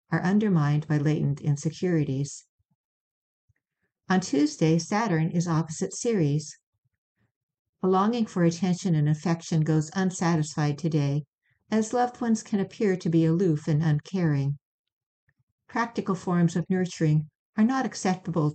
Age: 60-79